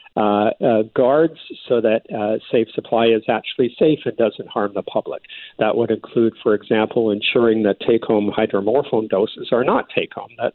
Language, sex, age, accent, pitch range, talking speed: English, male, 50-69, American, 105-120 Hz, 170 wpm